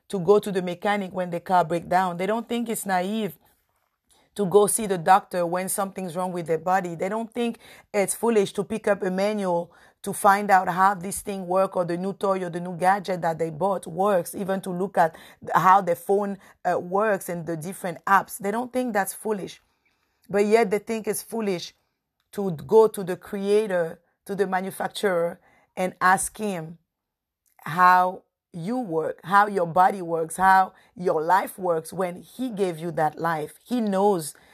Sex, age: female, 50-69